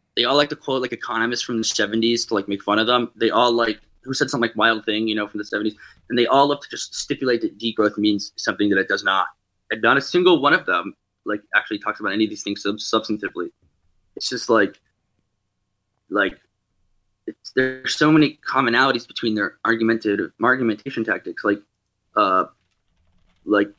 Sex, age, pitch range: male, 20-39, 105-130 Hz